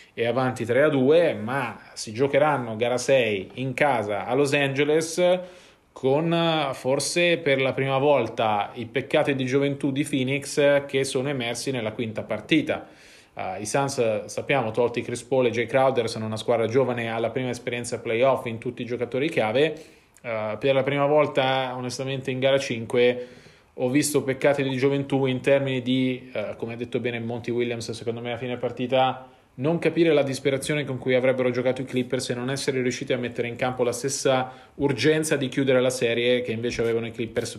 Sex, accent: male, native